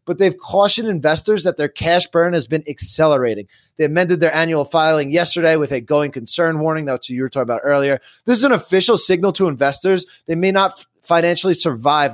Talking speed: 210 wpm